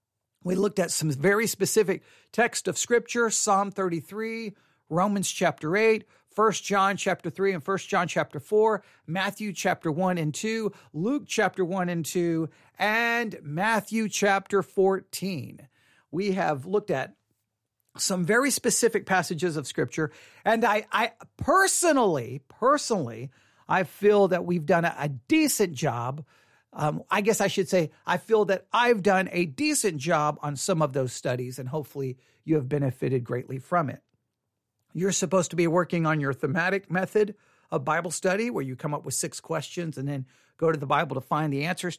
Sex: male